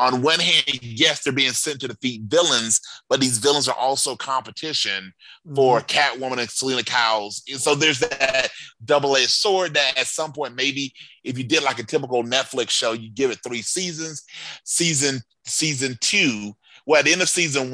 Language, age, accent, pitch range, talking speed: English, 30-49, American, 110-135 Hz, 185 wpm